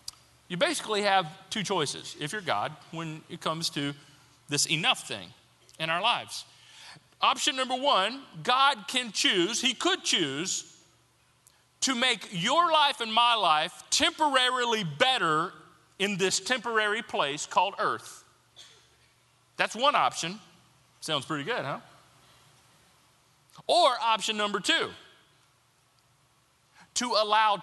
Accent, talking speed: American, 120 wpm